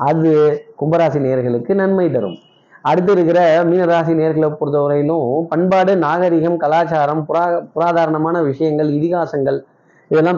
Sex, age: male, 30-49